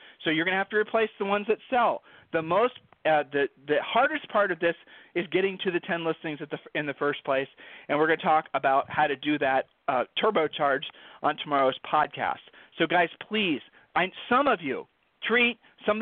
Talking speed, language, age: 210 wpm, English, 40-59